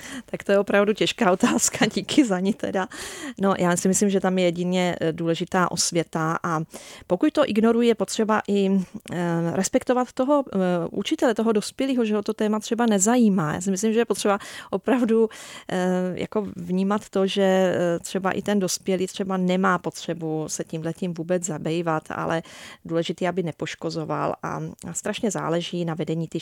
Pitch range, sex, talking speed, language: 165-200 Hz, female, 155 wpm, Czech